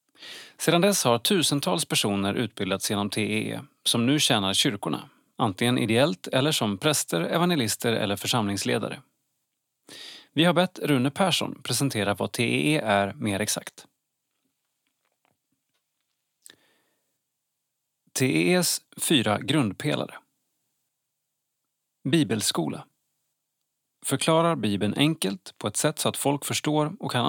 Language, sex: Swedish, male